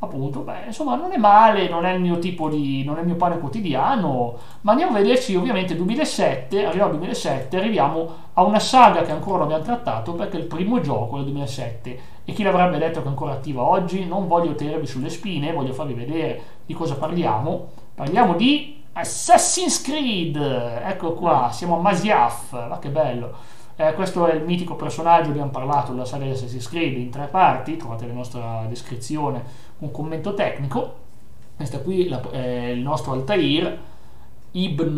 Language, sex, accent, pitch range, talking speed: Italian, male, native, 125-180 Hz, 180 wpm